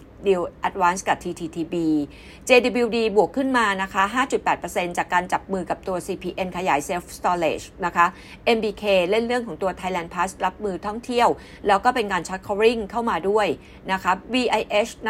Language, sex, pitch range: Thai, female, 180-230 Hz